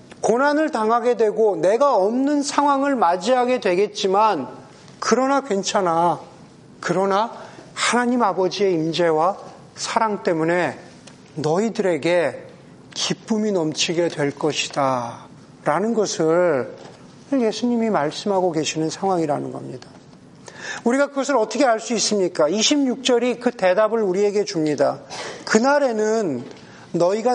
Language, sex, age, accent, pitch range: Korean, male, 40-59, native, 180-255 Hz